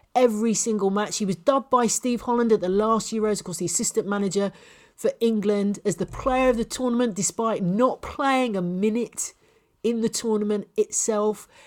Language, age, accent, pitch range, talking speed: English, 40-59, British, 195-255 Hz, 180 wpm